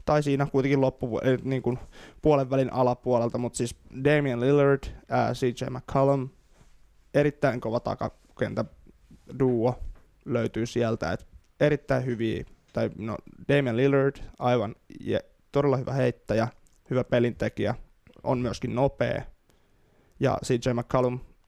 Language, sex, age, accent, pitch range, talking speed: Finnish, male, 20-39, native, 120-135 Hz, 110 wpm